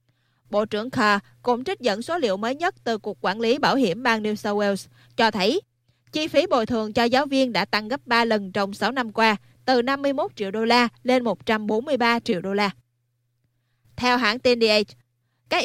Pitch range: 195-245 Hz